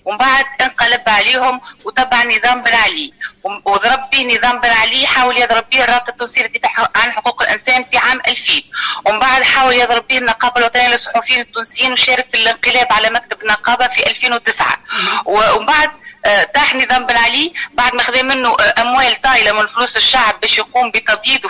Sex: female